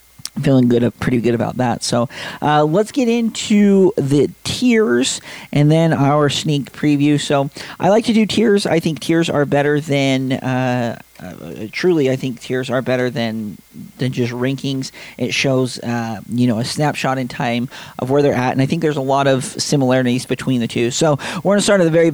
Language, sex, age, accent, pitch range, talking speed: English, male, 40-59, American, 125-150 Hz, 200 wpm